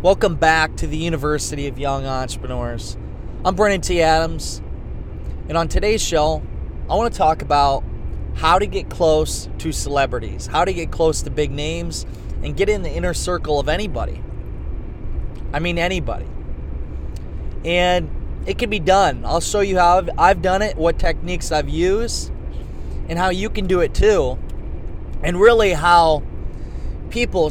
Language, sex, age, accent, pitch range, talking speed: English, male, 20-39, American, 140-195 Hz, 155 wpm